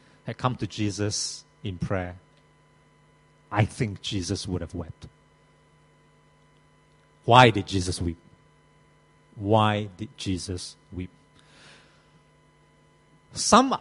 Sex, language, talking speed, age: male, English, 90 wpm, 50-69